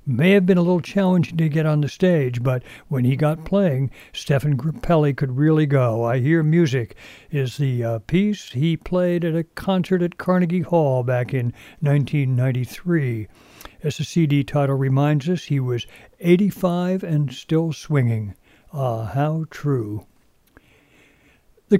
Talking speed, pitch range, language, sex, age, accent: 150 wpm, 130-175 Hz, English, male, 60-79, American